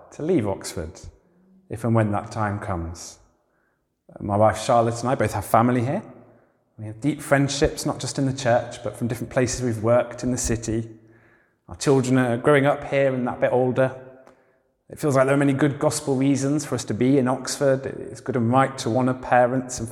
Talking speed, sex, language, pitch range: 210 wpm, male, English, 105-130 Hz